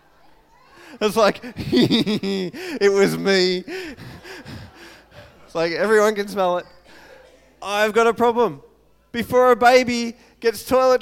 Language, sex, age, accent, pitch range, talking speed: English, male, 20-39, Australian, 205-250 Hz, 110 wpm